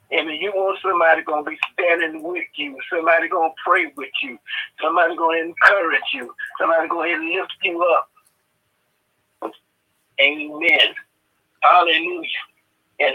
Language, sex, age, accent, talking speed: English, male, 60-79, American, 135 wpm